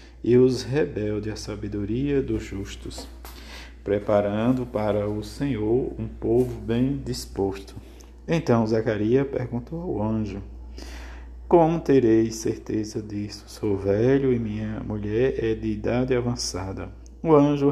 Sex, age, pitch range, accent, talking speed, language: male, 50-69, 100-125 Hz, Brazilian, 120 wpm, Portuguese